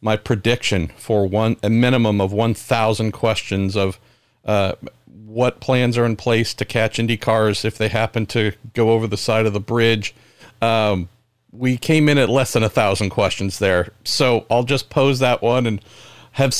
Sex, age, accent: male, 40-59, American